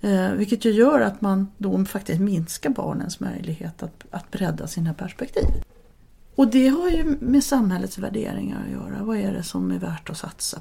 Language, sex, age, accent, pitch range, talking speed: English, female, 40-59, Swedish, 185-230 Hz, 185 wpm